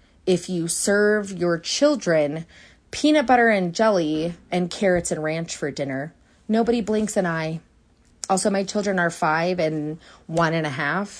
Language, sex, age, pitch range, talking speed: English, female, 30-49, 160-200 Hz, 155 wpm